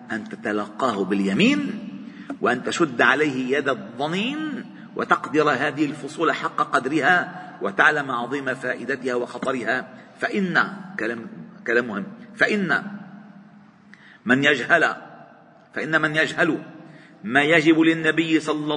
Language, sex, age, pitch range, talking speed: Arabic, male, 50-69, 150-215 Hz, 100 wpm